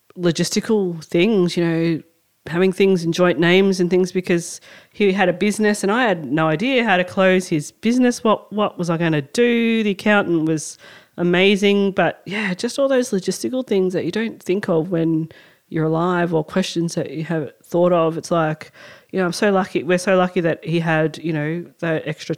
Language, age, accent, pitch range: English, 30-49, Australian, 160-195 Hz